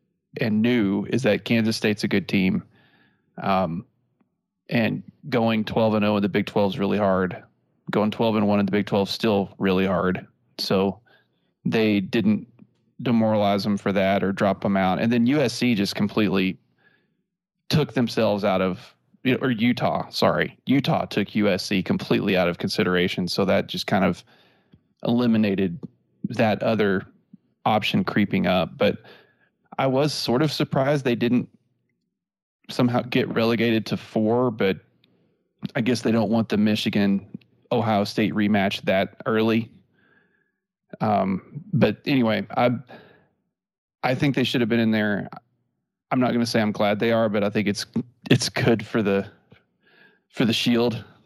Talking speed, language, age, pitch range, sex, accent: 155 wpm, English, 30-49, 100-120 Hz, male, American